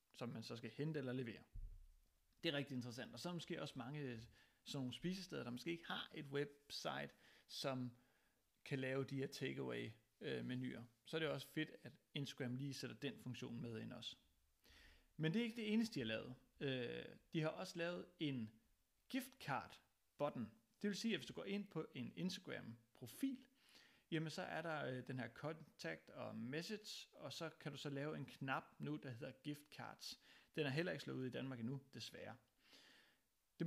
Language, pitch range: Danish, 125-165 Hz